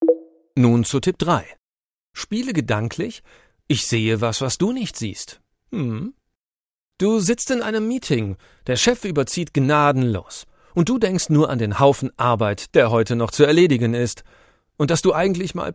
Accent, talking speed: German, 160 wpm